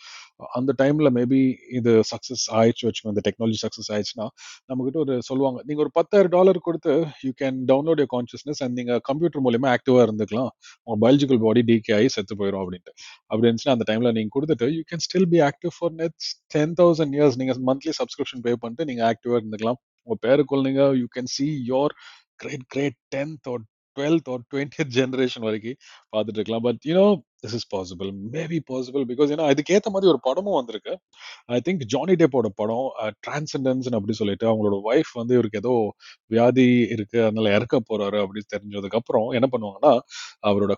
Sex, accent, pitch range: male, native, 115-145 Hz